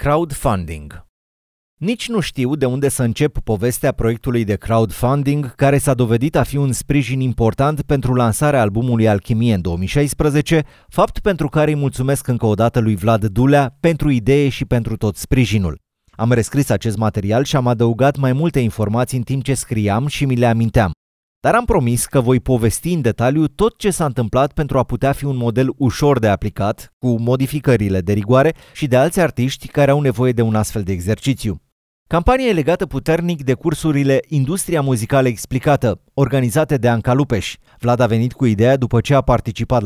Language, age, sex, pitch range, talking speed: Romanian, 30-49, male, 115-145 Hz, 180 wpm